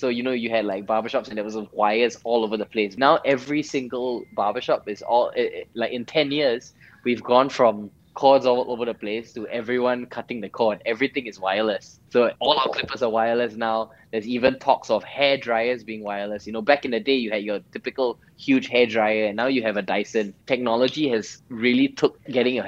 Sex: male